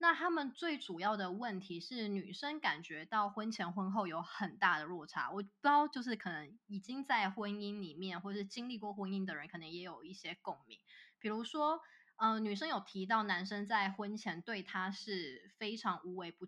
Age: 20-39